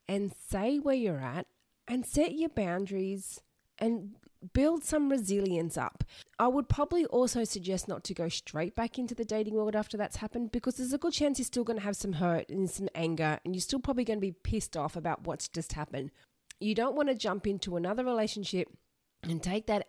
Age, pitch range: 30-49, 165-225 Hz